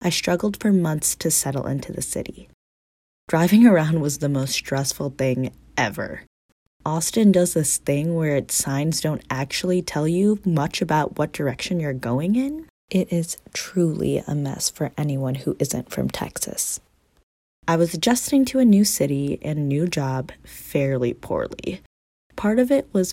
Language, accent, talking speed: English, American, 160 wpm